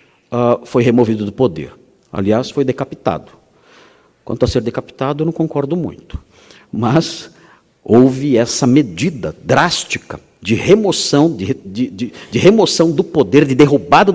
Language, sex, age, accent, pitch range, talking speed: Portuguese, male, 50-69, Brazilian, 120-155 Hz, 115 wpm